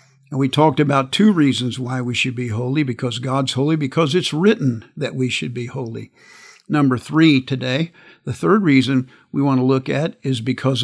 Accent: American